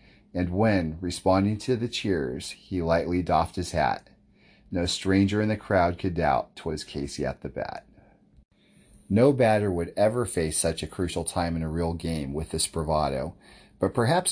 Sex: male